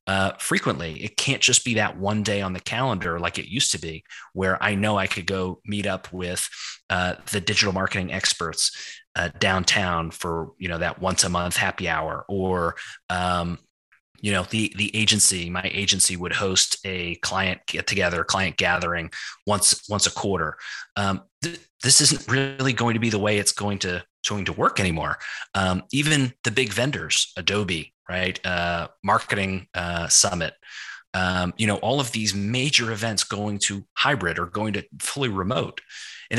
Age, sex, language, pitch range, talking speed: 30-49, male, English, 90-115 Hz, 180 wpm